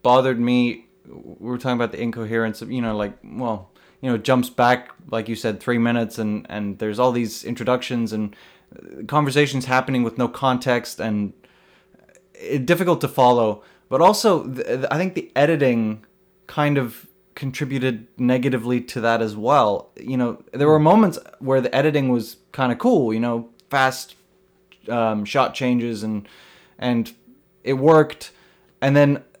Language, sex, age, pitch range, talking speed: English, male, 20-39, 115-150 Hz, 165 wpm